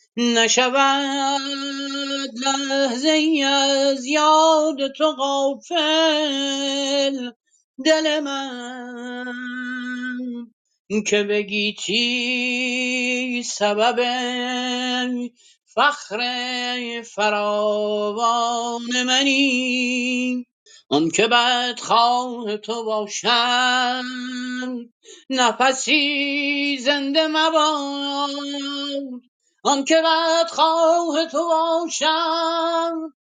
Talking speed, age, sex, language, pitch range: 55 wpm, 40-59, male, Persian, 245-285 Hz